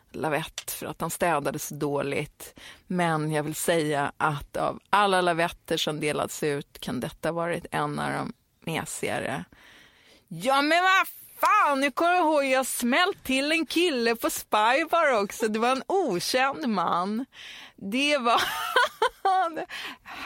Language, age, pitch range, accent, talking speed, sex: Swedish, 30-49, 180-250 Hz, native, 145 wpm, female